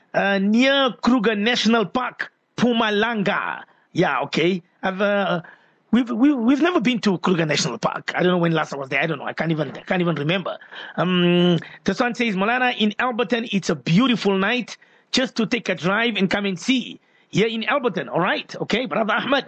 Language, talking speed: English, 200 wpm